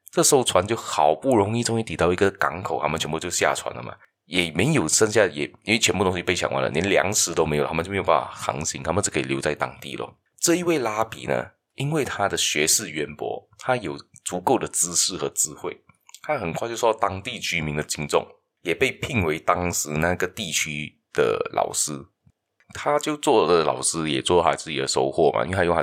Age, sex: 30-49, male